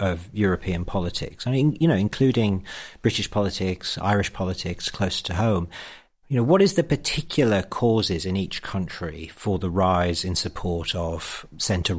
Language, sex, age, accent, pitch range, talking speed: English, male, 40-59, British, 90-110 Hz, 160 wpm